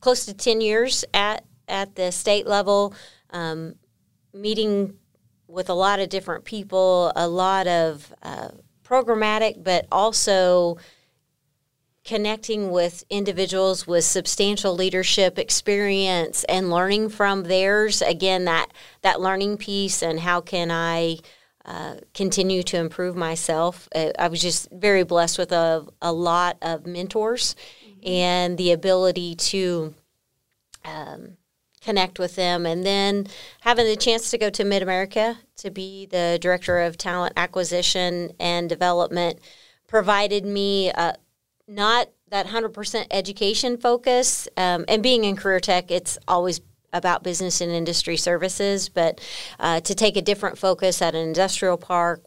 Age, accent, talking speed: 40-59, American, 140 wpm